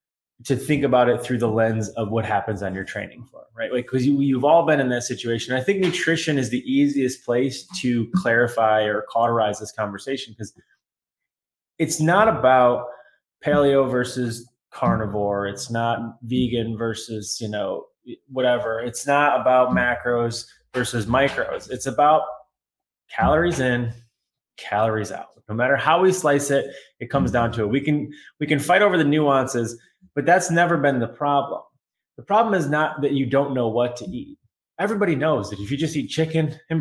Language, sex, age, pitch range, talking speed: English, male, 20-39, 115-150 Hz, 175 wpm